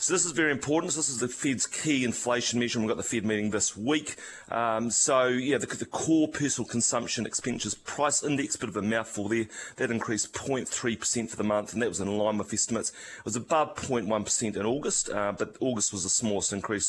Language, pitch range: English, 105-125 Hz